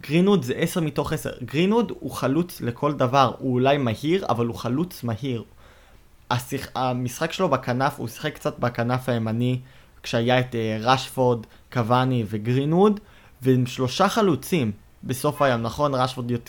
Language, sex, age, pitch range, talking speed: Hebrew, male, 20-39, 120-145 Hz, 145 wpm